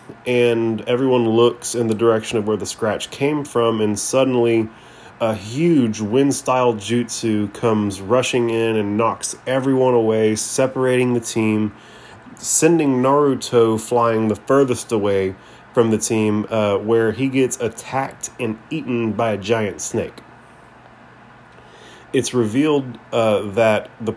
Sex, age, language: male, 30-49, English